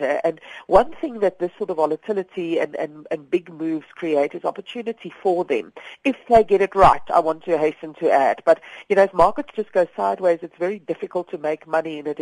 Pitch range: 155-195 Hz